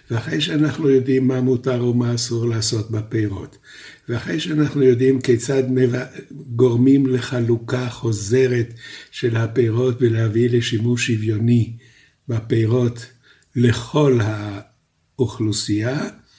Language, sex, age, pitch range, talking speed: Hebrew, male, 60-79, 115-135 Hz, 90 wpm